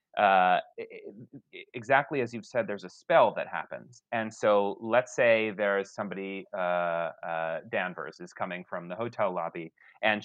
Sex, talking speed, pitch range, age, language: male, 160 wpm, 100-120 Hz, 30-49, English